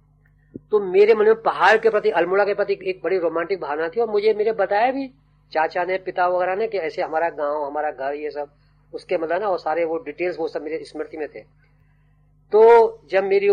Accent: native